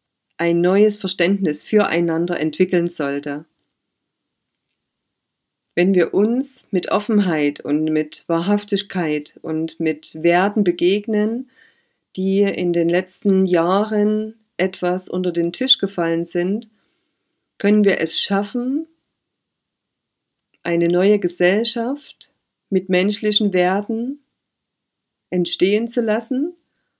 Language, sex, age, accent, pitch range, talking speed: German, female, 40-59, German, 175-215 Hz, 95 wpm